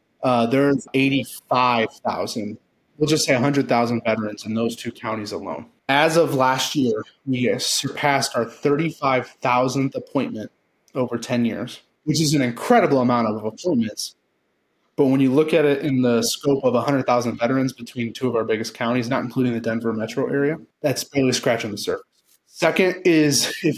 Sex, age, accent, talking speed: male, 20-39, American, 160 wpm